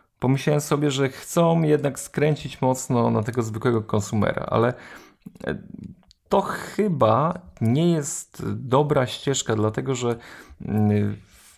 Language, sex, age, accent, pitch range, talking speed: Polish, male, 30-49, native, 110-140 Hz, 110 wpm